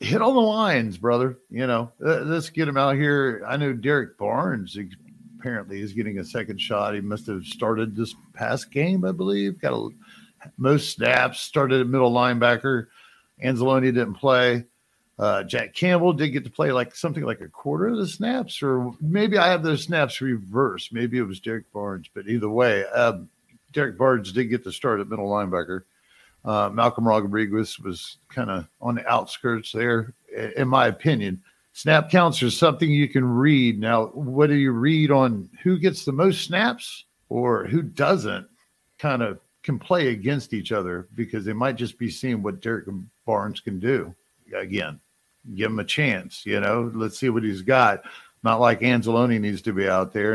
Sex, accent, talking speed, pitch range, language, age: male, American, 185 wpm, 110-145 Hz, English, 50-69